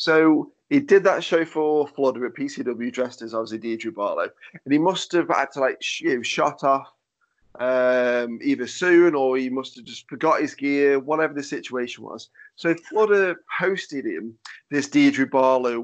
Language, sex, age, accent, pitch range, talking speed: English, male, 30-49, British, 130-175 Hz, 180 wpm